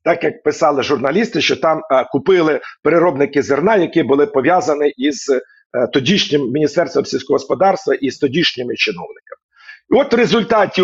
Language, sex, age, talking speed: Ukrainian, male, 50-69, 150 wpm